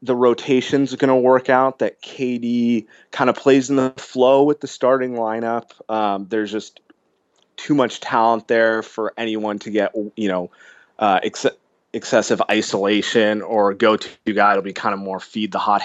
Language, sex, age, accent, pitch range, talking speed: English, male, 20-39, American, 105-130 Hz, 175 wpm